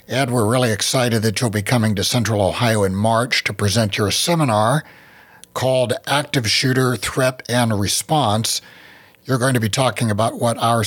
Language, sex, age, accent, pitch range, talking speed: English, male, 60-79, American, 110-130 Hz, 170 wpm